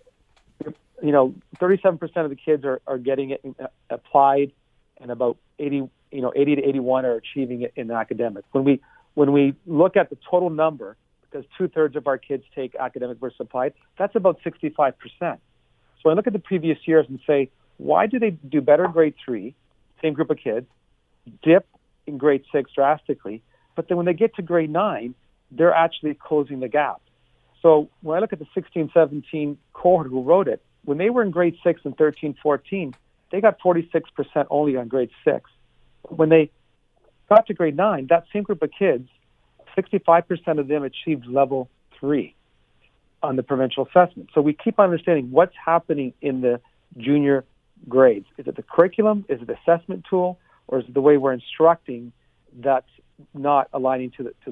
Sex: male